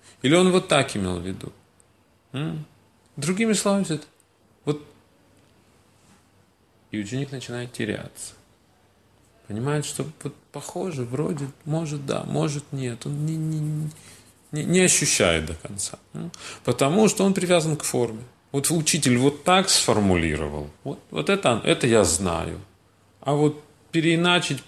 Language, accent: Russian, native